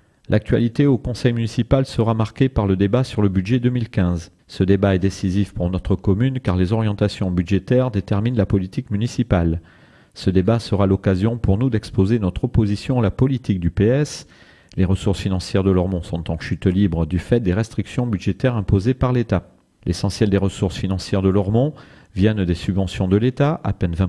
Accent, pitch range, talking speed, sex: French, 95-120 Hz, 180 wpm, male